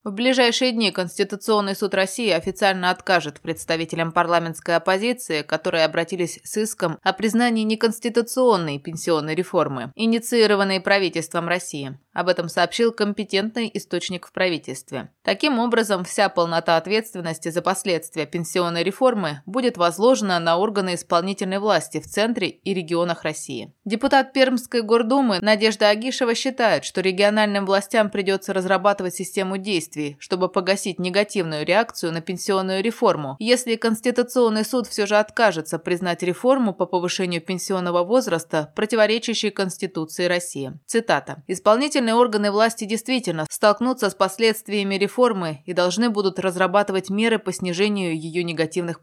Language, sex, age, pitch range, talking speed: Russian, female, 20-39, 175-220 Hz, 125 wpm